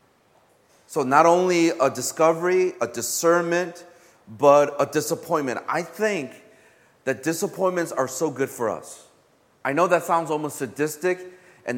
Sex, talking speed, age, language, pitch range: male, 130 wpm, 30-49, English, 135-180 Hz